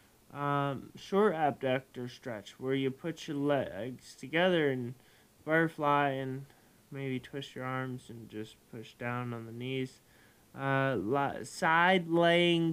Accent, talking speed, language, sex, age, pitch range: American, 130 wpm, English, male, 20-39, 125-160 Hz